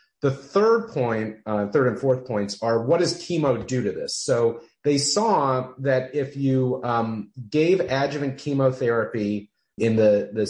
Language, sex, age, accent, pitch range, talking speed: English, male, 30-49, American, 110-145 Hz, 160 wpm